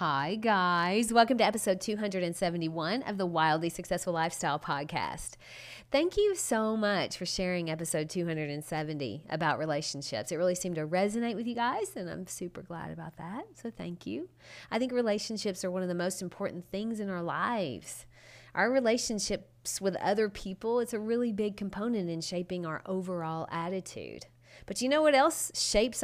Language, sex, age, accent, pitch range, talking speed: English, female, 30-49, American, 160-225 Hz, 170 wpm